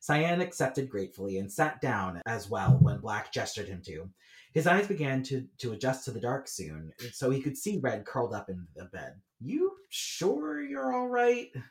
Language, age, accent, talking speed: English, 30-49, American, 195 wpm